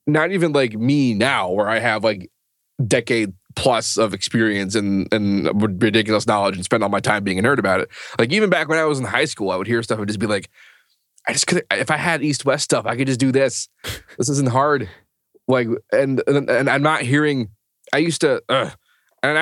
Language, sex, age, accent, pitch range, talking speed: English, male, 20-39, American, 110-140 Hz, 220 wpm